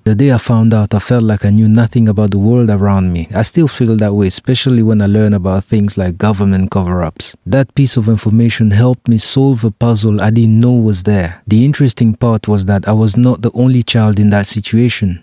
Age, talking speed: 30-49, 230 wpm